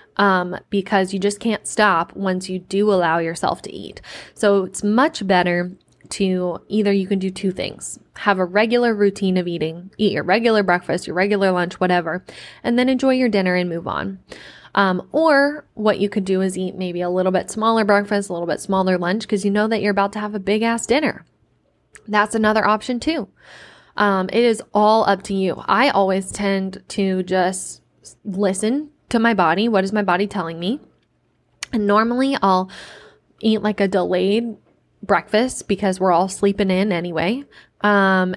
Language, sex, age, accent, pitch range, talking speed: English, female, 10-29, American, 185-225 Hz, 185 wpm